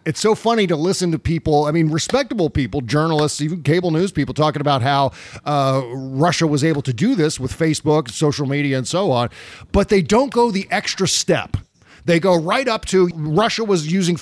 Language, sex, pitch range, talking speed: English, male, 140-205 Hz, 205 wpm